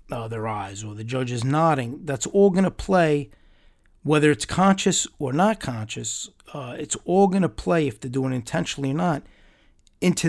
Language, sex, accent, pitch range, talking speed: English, male, American, 115-155 Hz, 190 wpm